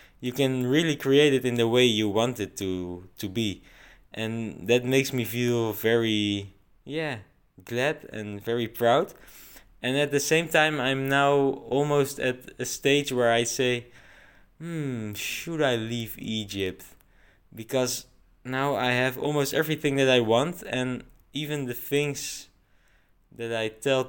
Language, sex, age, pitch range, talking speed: English, male, 20-39, 105-130 Hz, 150 wpm